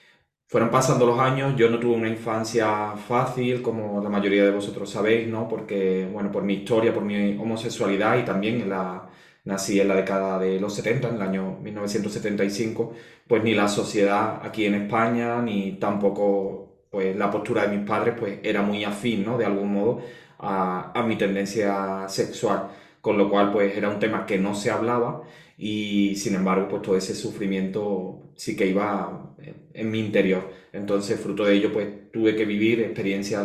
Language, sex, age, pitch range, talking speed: Spanish, male, 20-39, 100-115 Hz, 180 wpm